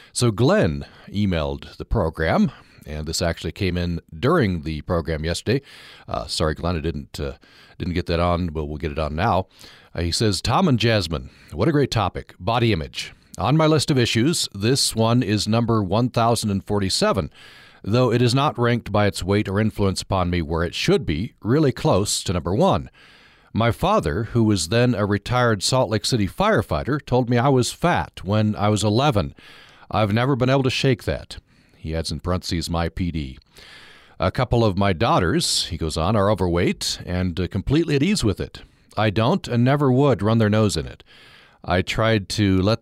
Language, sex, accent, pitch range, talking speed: English, male, American, 85-120 Hz, 190 wpm